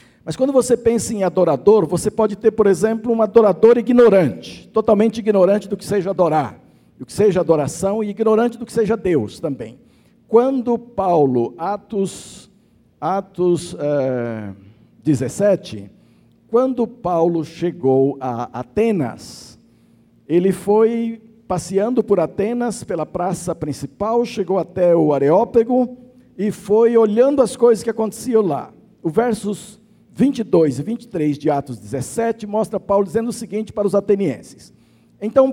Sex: male